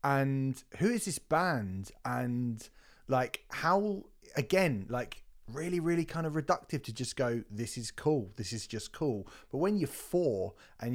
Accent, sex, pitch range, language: British, male, 115-150 Hz, English